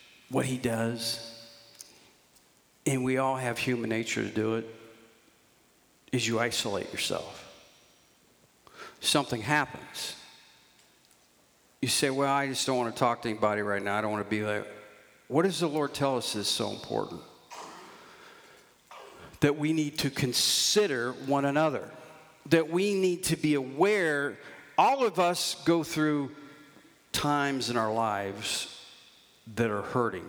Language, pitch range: English, 115-155 Hz